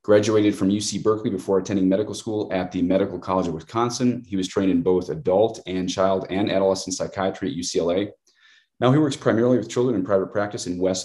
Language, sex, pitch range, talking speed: English, male, 90-115 Hz, 205 wpm